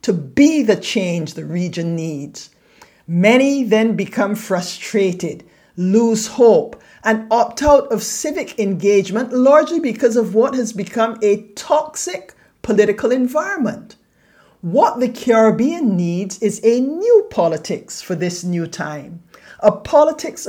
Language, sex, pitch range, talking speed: English, male, 195-250 Hz, 125 wpm